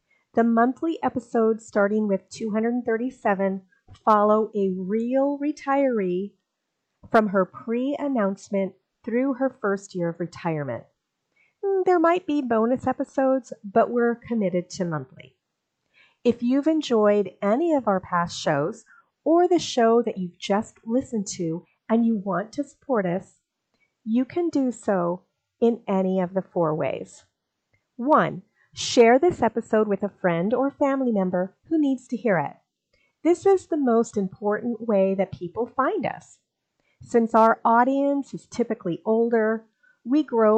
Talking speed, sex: 140 wpm, female